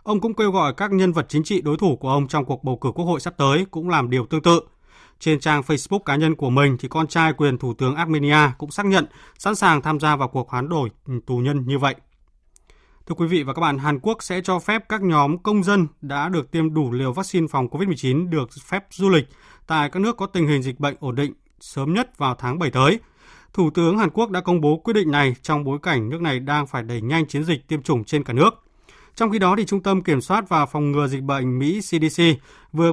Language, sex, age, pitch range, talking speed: Vietnamese, male, 20-39, 140-180 Hz, 255 wpm